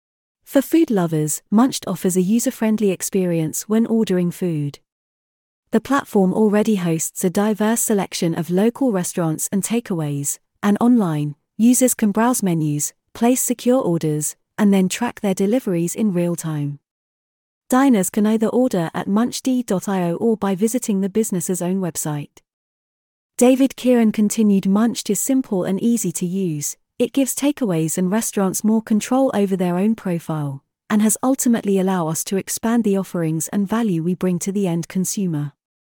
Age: 30-49